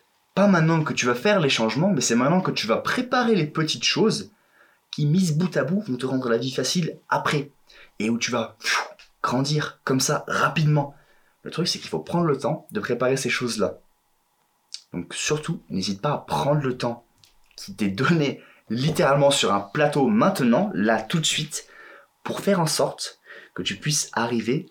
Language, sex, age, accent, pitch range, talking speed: French, male, 20-39, French, 125-185 Hz, 190 wpm